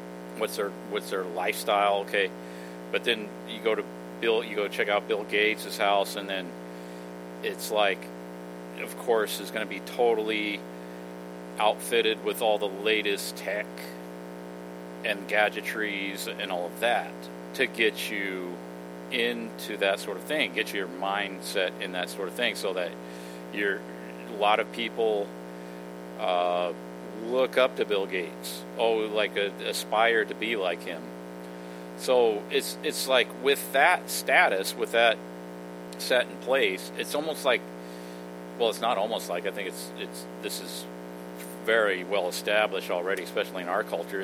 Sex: male